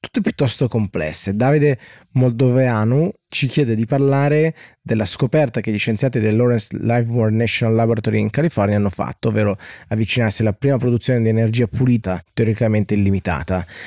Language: Italian